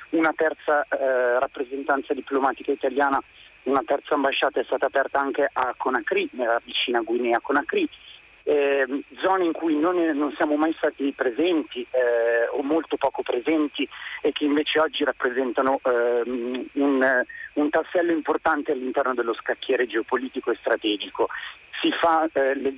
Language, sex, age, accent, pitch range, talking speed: Italian, male, 40-59, native, 130-160 Hz, 140 wpm